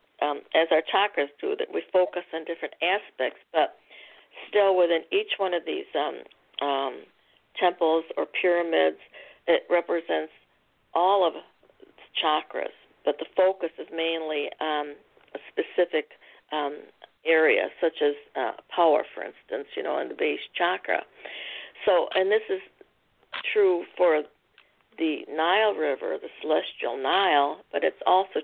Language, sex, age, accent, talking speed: English, female, 50-69, American, 140 wpm